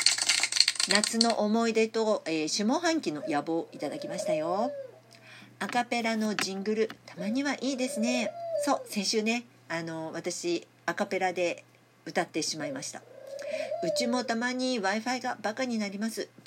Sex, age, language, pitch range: female, 50-69, Japanese, 180-280 Hz